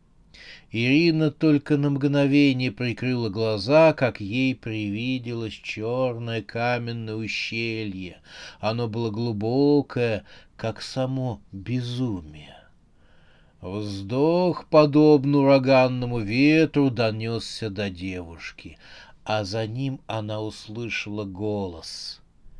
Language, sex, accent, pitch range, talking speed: Russian, male, native, 105-140 Hz, 80 wpm